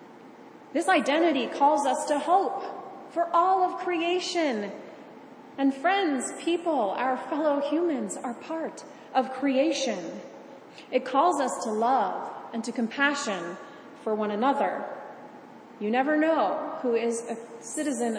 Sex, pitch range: female, 210-285 Hz